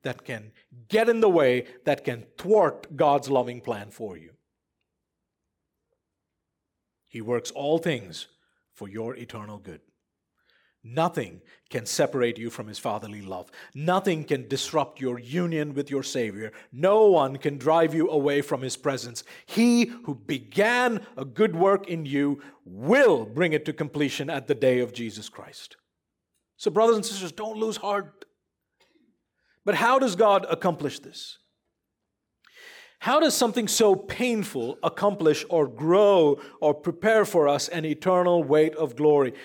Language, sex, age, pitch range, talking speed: English, male, 50-69, 130-185 Hz, 145 wpm